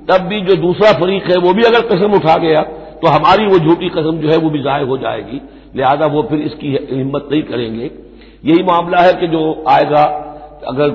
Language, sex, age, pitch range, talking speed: Hindi, male, 60-79, 135-180 Hz, 210 wpm